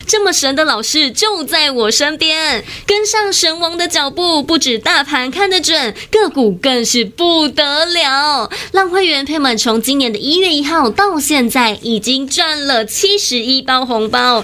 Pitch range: 230-330 Hz